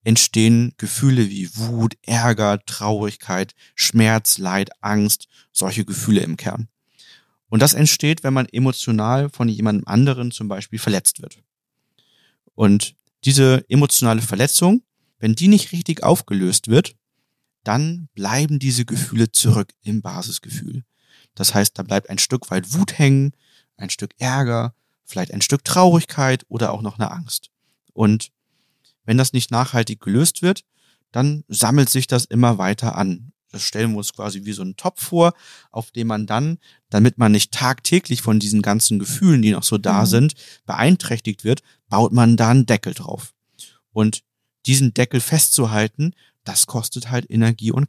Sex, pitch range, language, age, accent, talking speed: male, 105-140 Hz, German, 40-59, German, 155 wpm